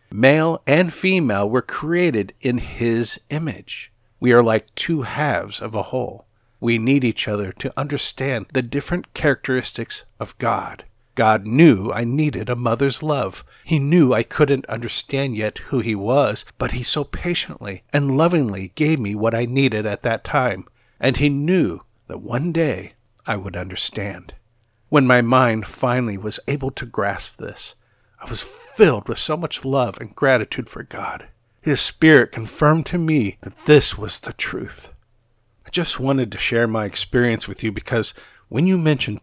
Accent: American